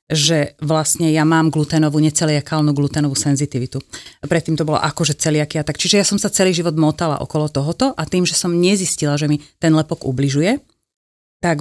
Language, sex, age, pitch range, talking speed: Slovak, female, 30-49, 150-180 Hz, 180 wpm